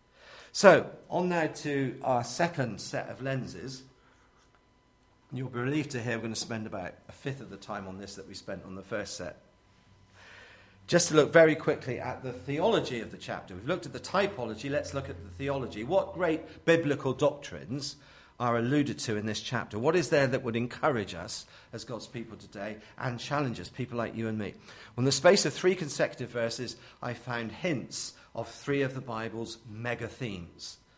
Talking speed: 195 wpm